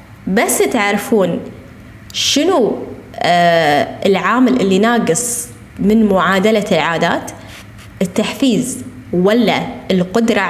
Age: 20-39